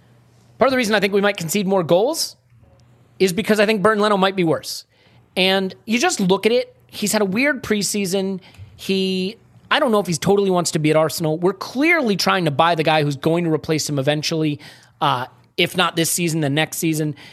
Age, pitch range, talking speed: 30-49, 150-200 Hz, 220 wpm